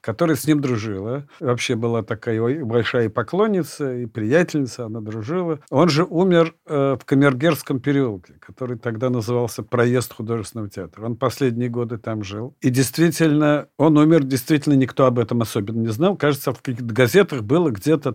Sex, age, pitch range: male, 50-69, 120-150 Hz